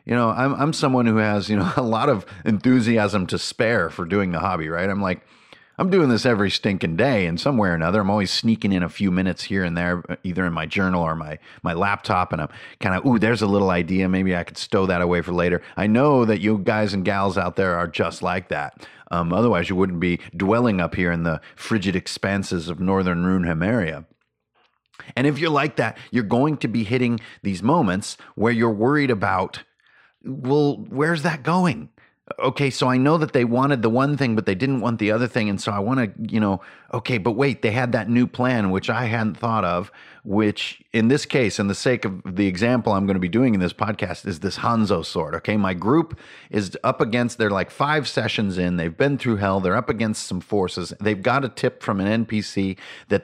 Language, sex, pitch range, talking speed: English, male, 95-120 Hz, 230 wpm